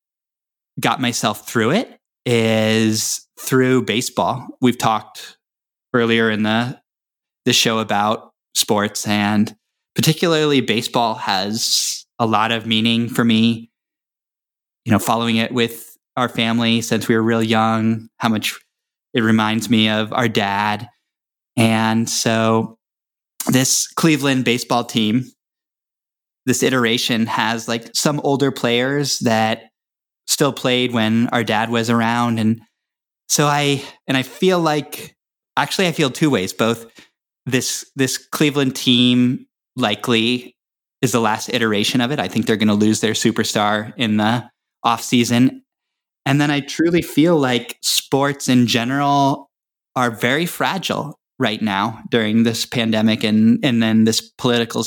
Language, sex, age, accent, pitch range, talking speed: English, male, 10-29, American, 110-130 Hz, 135 wpm